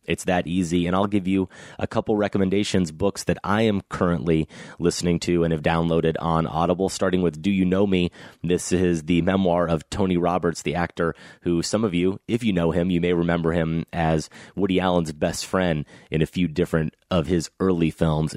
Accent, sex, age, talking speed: American, male, 30-49, 205 wpm